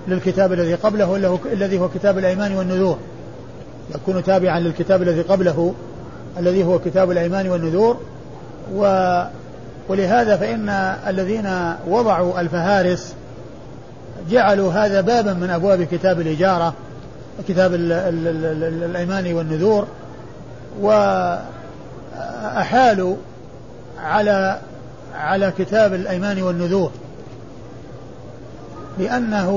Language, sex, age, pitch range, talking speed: Arabic, male, 40-59, 170-205 Hz, 85 wpm